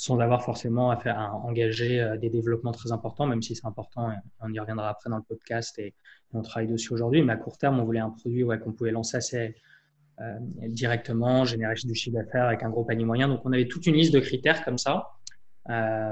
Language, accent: French, French